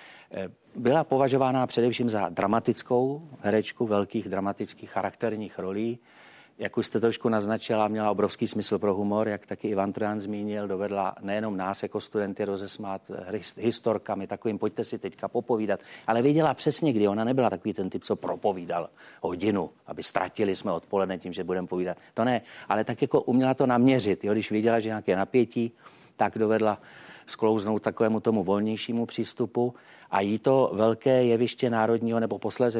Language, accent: Czech, native